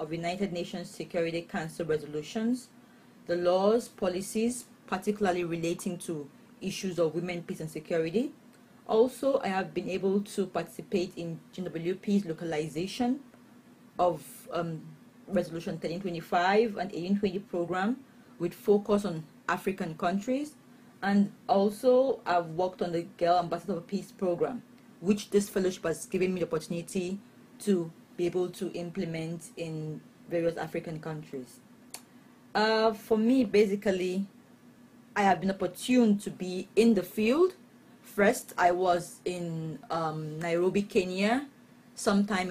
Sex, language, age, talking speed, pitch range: female, English, 30-49, 125 wpm, 175-220 Hz